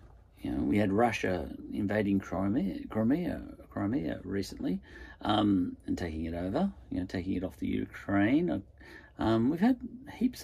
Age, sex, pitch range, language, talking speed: 40-59, male, 90-125 Hz, English, 150 wpm